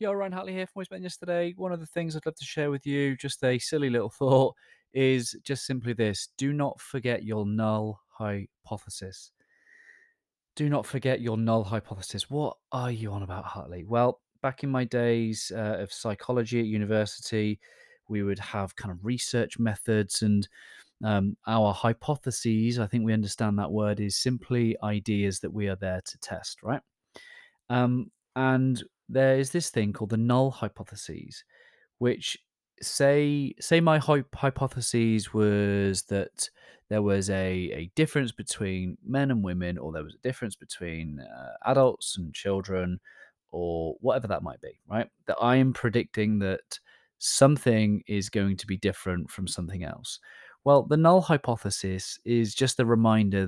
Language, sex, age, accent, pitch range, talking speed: English, male, 30-49, British, 100-135 Hz, 165 wpm